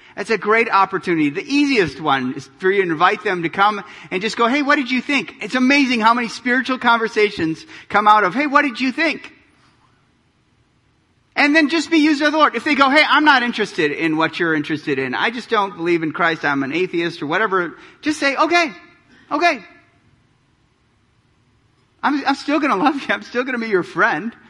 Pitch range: 160-255 Hz